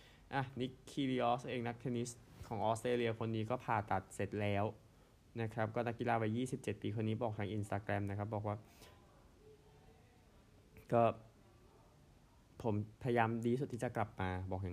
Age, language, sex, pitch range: 20-39, Thai, male, 100-120 Hz